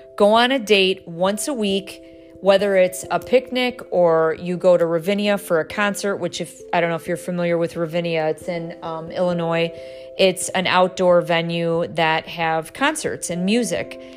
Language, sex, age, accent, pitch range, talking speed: English, female, 40-59, American, 170-200 Hz, 180 wpm